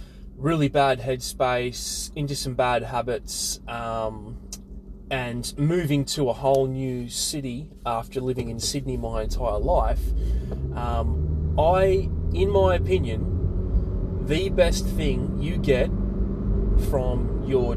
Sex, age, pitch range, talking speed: male, 20-39, 85-125 Hz, 115 wpm